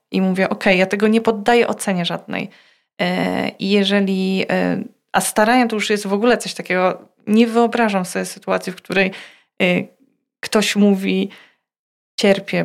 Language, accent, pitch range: Polish, native, 180-220 Hz